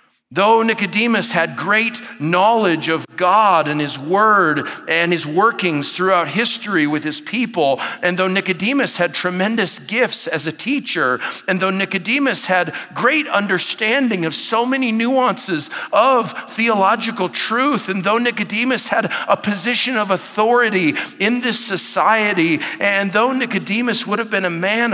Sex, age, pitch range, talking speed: male, 50-69, 180-225 Hz, 140 wpm